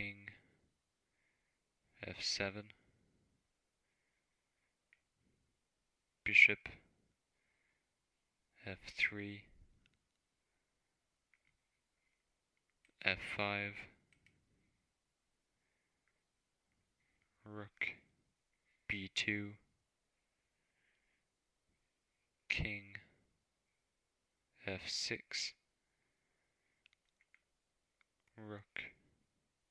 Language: English